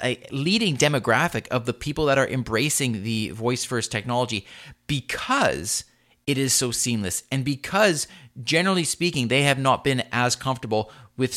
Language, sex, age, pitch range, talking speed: English, male, 30-49, 105-140 Hz, 155 wpm